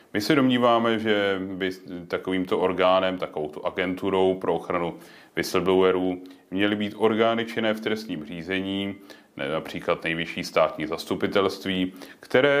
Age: 30-49